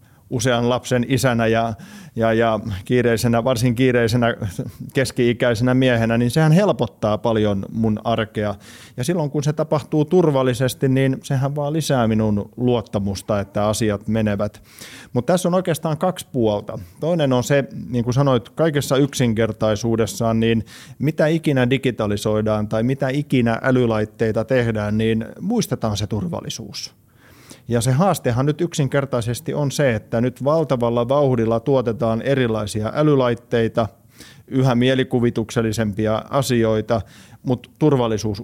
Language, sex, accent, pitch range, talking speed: Finnish, male, native, 110-135 Hz, 120 wpm